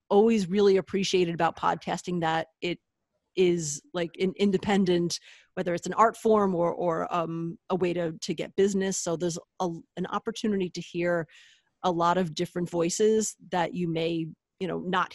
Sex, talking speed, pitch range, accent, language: female, 165 wpm, 170-200 Hz, American, English